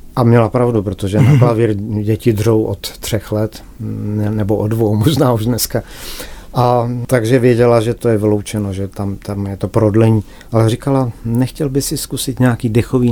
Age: 50-69